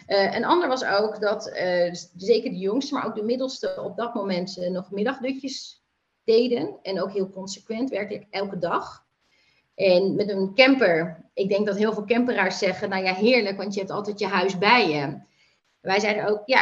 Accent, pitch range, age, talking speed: Dutch, 190-235 Hz, 30-49, 195 wpm